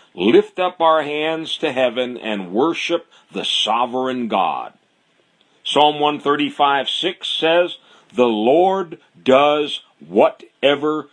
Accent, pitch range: American, 115-150 Hz